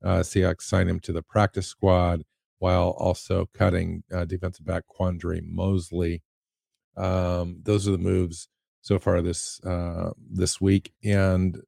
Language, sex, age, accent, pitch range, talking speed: English, male, 50-69, American, 90-105 Hz, 145 wpm